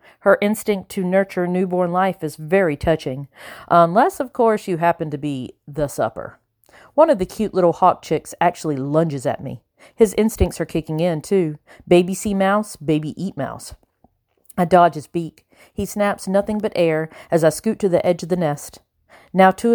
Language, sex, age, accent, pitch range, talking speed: English, female, 40-59, American, 160-205 Hz, 185 wpm